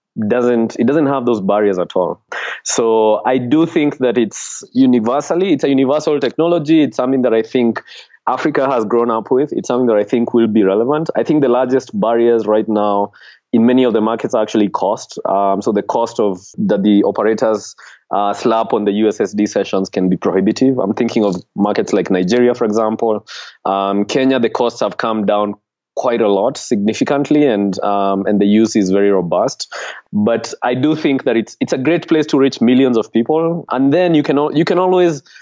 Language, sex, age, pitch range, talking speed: English, male, 20-39, 105-130 Hz, 200 wpm